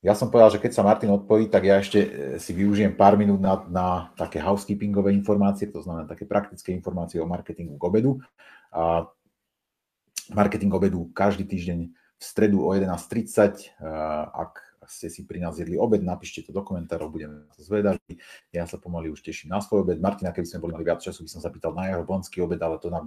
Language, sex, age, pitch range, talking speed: Slovak, male, 30-49, 80-105 Hz, 200 wpm